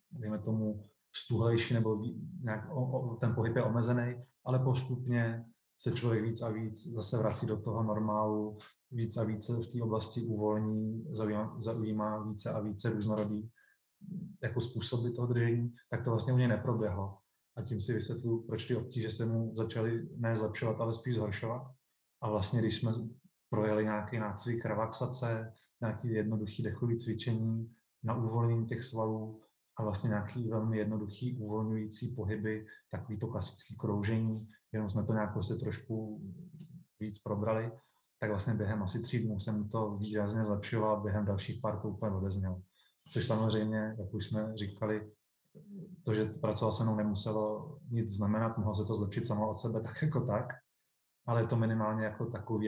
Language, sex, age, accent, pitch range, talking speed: Czech, male, 20-39, native, 105-120 Hz, 160 wpm